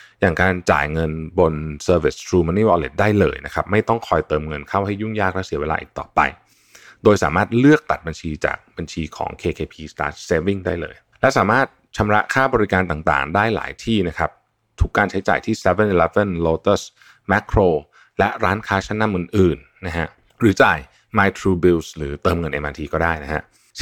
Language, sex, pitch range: Thai, male, 80-105 Hz